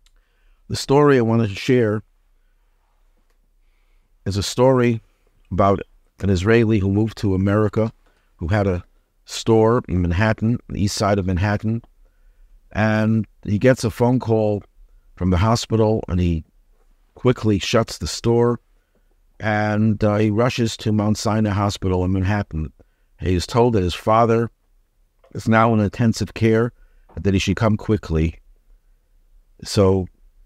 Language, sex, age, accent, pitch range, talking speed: English, male, 50-69, American, 85-110 Hz, 135 wpm